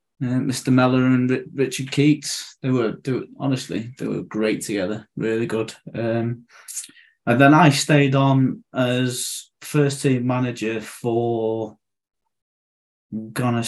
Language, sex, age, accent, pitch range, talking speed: English, male, 20-39, British, 110-130 Hz, 125 wpm